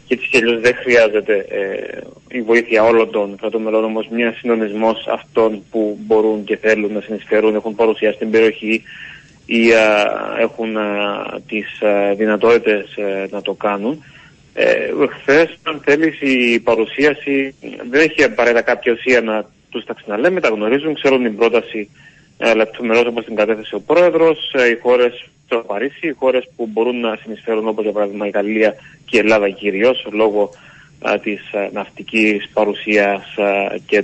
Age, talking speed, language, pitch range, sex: 30-49, 150 wpm, Greek, 105-130 Hz, male